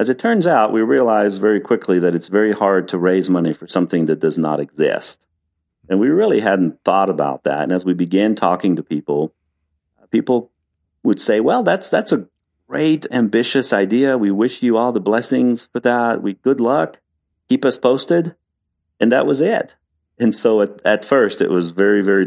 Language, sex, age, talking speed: English, male, 40-59, 195 wpm